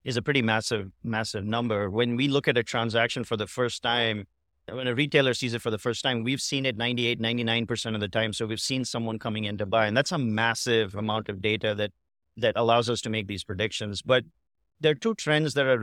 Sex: male